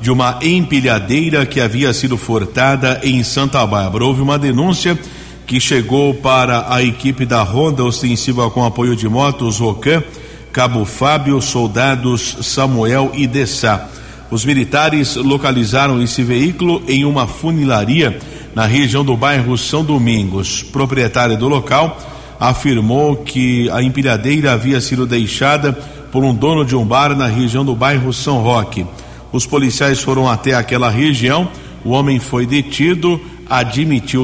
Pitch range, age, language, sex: 120-145 Hz, 50-69, Portuguese, male